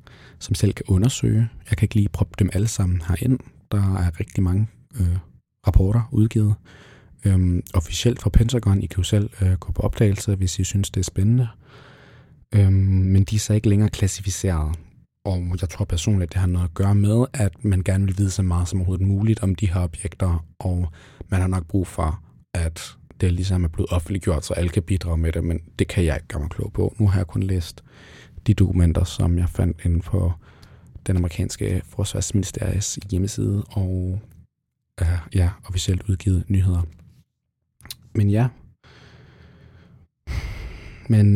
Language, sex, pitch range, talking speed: Danish, male, 90-105 Hz, 175 wpm